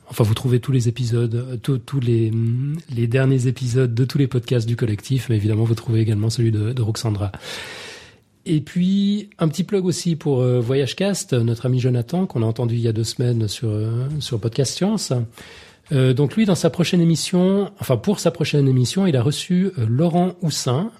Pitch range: 120-165 Hz